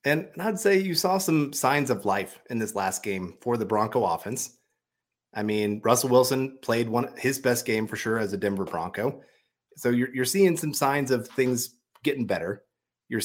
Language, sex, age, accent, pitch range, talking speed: English, male, 30-49, American, 105-135 Hz, 195 wpm